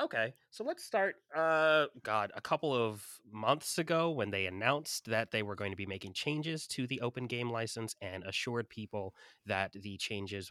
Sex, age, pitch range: male, 30-49, 100-120 Hz